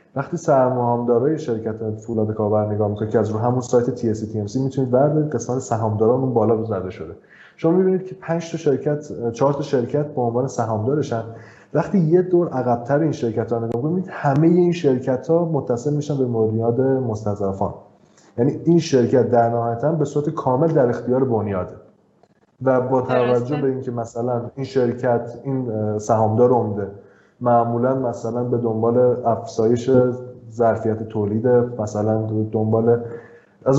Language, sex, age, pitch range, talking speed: Persian, male, 20-39, 110-135 Hz, 145 wpm